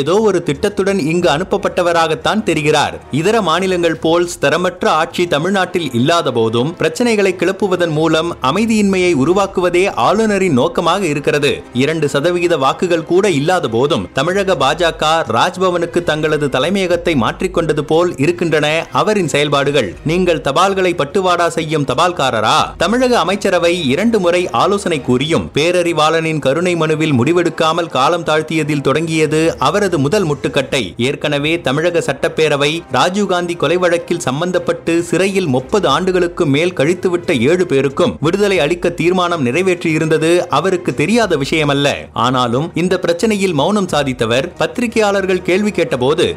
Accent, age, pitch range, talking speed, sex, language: native, 30-49, 155-185 Hz, 110 wpm, male, Tamil